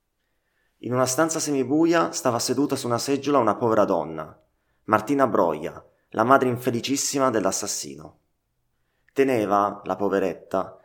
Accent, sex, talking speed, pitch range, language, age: native, male, 115 wpm, 100-130 Hz, Italian, 30-49